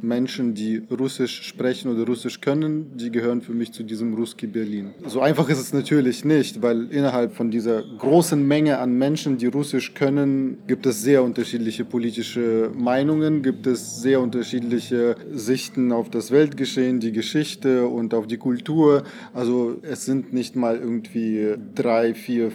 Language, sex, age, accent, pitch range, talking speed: German, male, 20-39, German, 120-145 Hz, 160 wpm